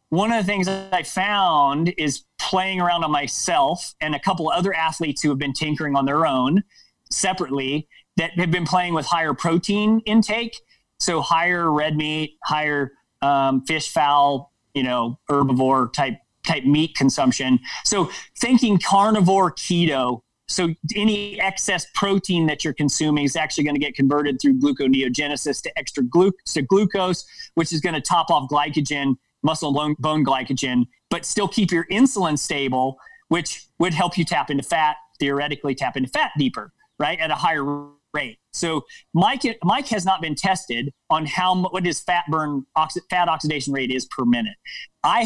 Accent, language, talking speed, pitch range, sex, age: American, English, 165 wpm, 145-185 Hz, male, 30-49